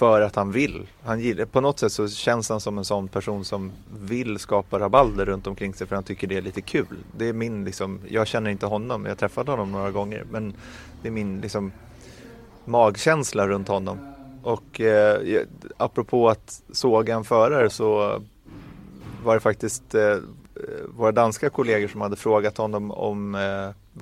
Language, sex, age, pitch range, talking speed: Swedish, male, 30-49, 100-115 Hz, 180 wpm